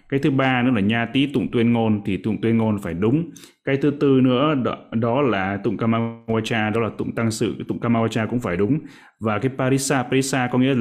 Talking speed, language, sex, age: 230 wpm, Vietnamese, male, 20-39